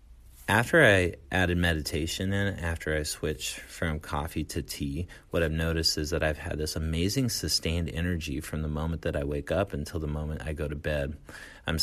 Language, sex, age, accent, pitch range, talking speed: English, male, 30-49, American, 75-90 Hz, 195 wpm